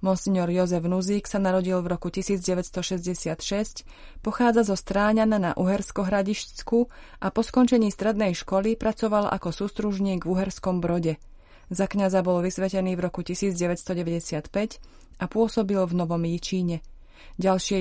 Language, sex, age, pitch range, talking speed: Slovak, female, 30-49, 180-205 Hz, 125 wpm